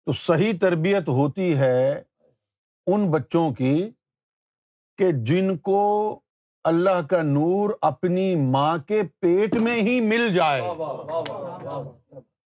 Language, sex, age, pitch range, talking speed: Urdu, male, 50-69, 130-195 Hz, 105 wpm